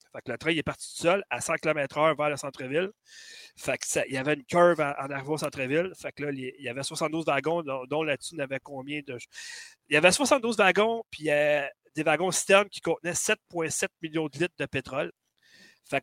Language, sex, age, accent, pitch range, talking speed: French, male, 30-49, Canadian, 140-185 Hz, 245 wpm